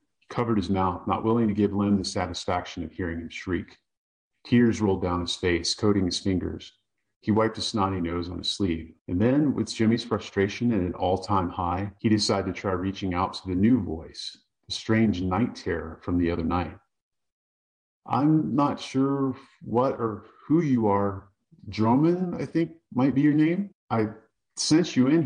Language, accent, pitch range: English, American, 90-115 Hz